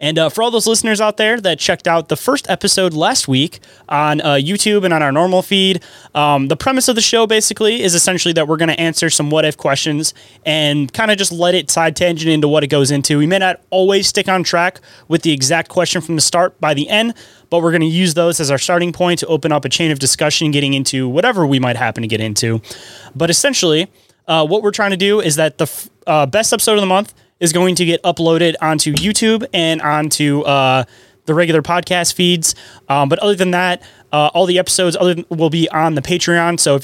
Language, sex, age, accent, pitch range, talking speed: English, male, 20-39, American, 145-175 Hz, 235 wpm